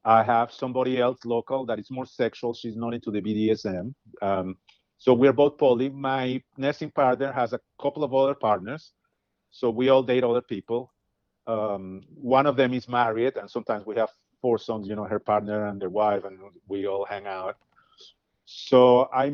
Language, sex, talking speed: English, male, 185 wpm